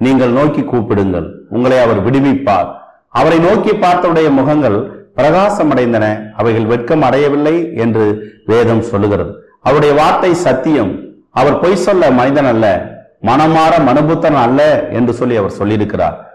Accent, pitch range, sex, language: native, 110-160 Hz, male, Tamil